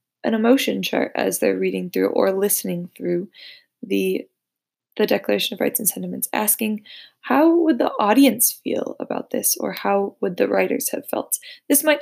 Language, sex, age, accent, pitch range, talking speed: English, female, 20-39, American, 190-270 Hz, 170 wpm